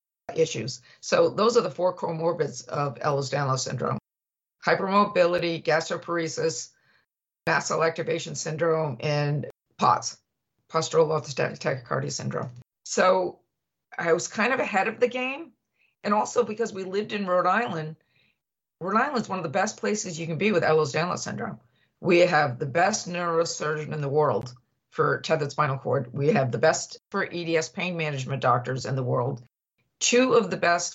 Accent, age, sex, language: American, 50-69, female, English